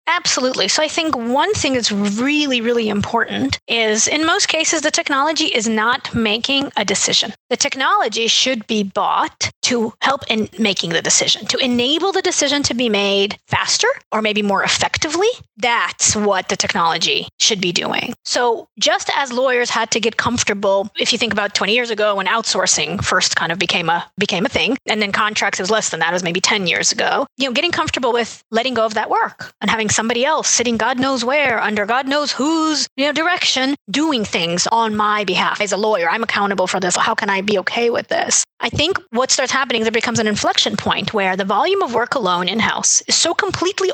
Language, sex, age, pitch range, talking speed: English, female, 30-49, 210-280 Hz, 210 wpm